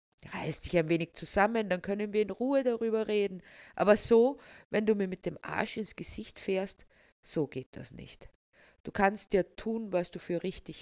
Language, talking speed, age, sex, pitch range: German, 200 wpm, 50-69, female, 160-215 Hz